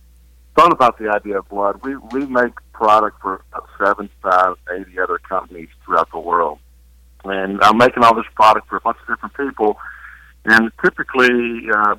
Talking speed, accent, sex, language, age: 175 wpm, American, male, English, 50-69